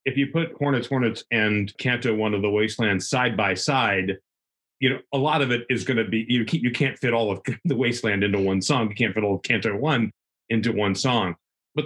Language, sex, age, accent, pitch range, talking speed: English, male, 40-59, American, 110-135 Hz, 230 wpm